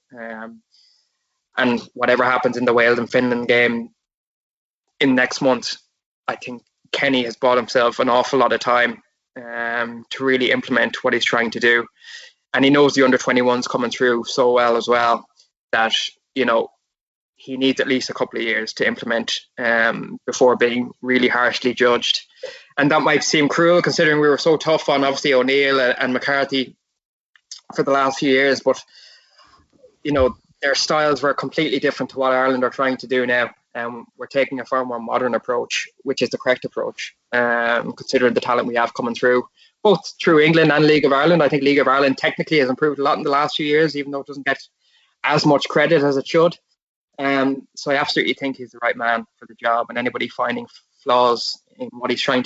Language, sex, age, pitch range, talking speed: English, male, 20-39, 120-145 Hz, 200 wpm